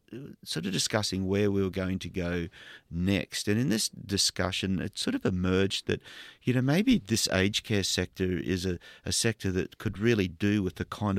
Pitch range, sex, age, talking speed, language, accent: 95-115 Hz, male, 40-59, 200 wpm, English, Australian